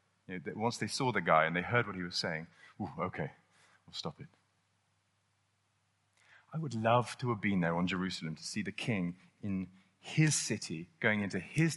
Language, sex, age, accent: English, male, 30-49, British